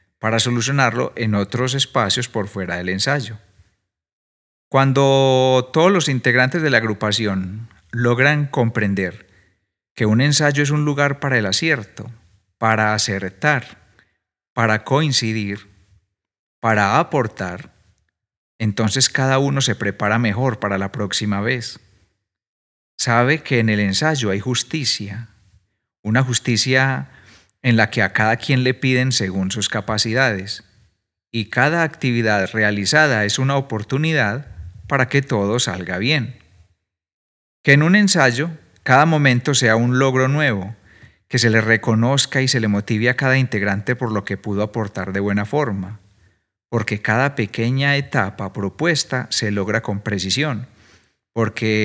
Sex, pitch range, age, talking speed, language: male, 100-130 Hz, 40-59, 130 wpm, Spanish